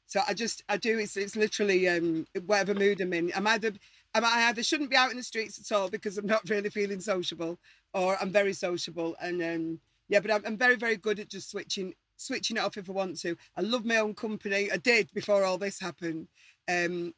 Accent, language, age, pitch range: British, English, 40-59, 195-250 Hz